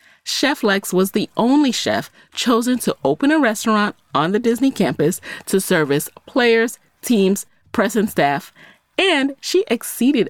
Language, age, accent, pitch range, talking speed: English, 30-49, American, 180-250 Hz, 145 wpm